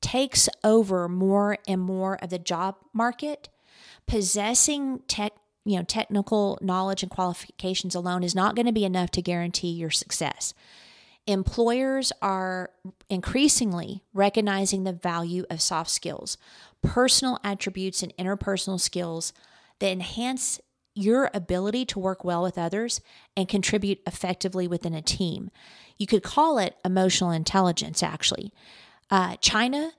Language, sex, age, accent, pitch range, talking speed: English, female, 40-59, American, 180-210 Hz, 130 wpm